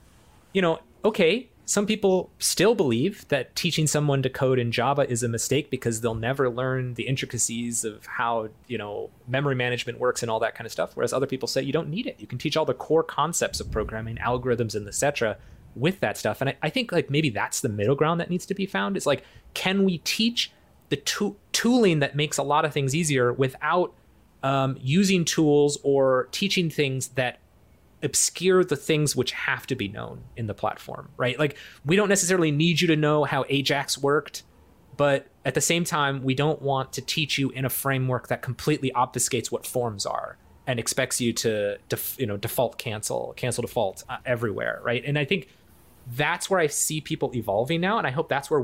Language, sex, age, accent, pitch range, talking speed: English, male, 20-39, American, 120-155 Hz, 205 wpm